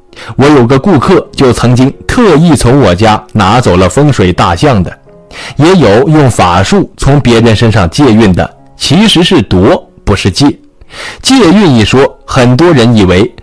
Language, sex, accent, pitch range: Chinese, male, native, 105-145 Hz